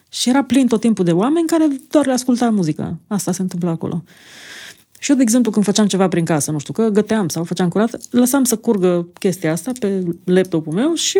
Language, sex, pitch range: Romanian, female, 185-255 Hz